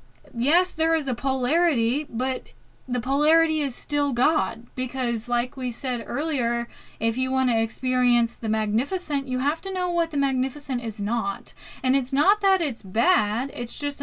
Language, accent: English, American